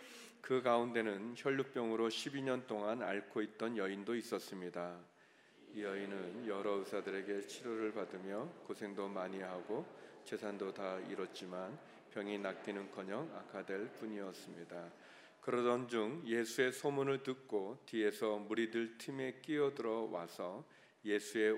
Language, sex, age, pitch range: Korean, male, 40-59, 100-115 Hz